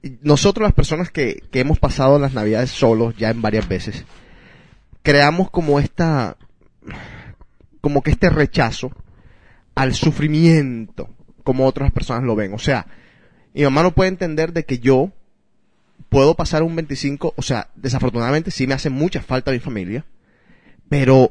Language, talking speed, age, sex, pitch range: Spanish, 150 wpm, 30-49, male, 125-170 Hz